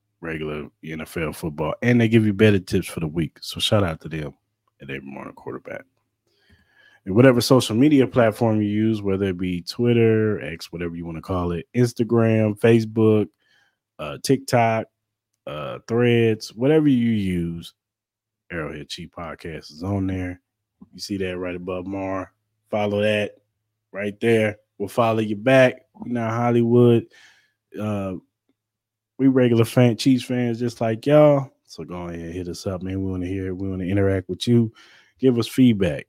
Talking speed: 165 wpm